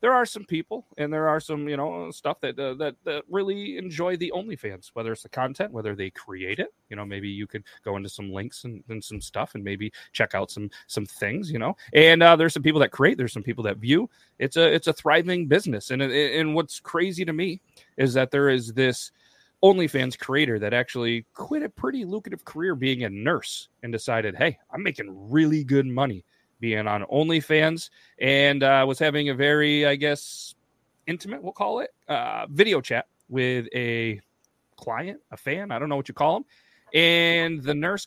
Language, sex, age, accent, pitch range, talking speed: English, male, 30-49, American, 115-155 Hz, 205 wpm